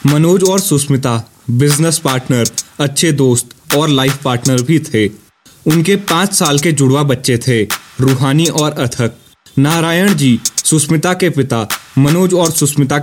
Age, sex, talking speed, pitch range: 20-39, male, 140 wpm, 130-165 Hz